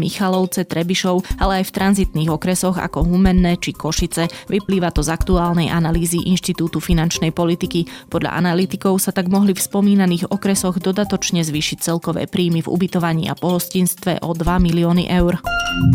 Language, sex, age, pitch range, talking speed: Slovak, female, 20-39, 165-185 Hz, 145 wpm